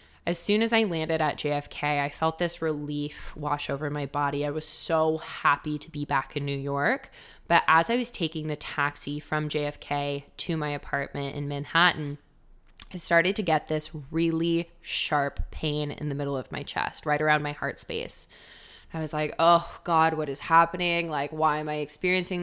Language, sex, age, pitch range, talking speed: English, female, 20-39, 145-160 Hz, 190 wpm